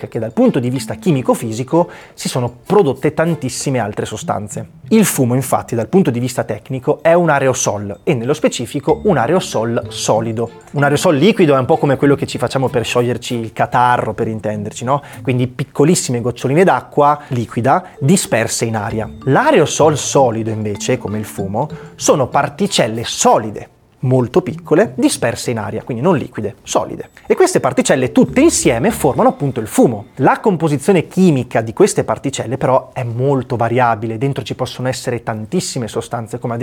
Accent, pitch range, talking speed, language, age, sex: native, 120-160 Hz, 165 wpm, Italian, 30-49, male